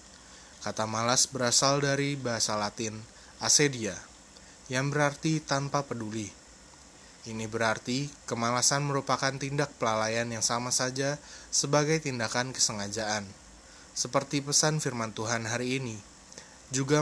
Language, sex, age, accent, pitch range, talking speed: Indonesian, male, 20-39, native, 110-135 Hz, 105 wpm